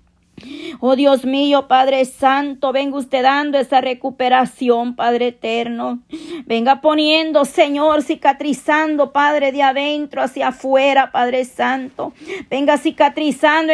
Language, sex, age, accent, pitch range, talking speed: Spanish, female, 40-59, American, 265-290 Hz, 110 wpm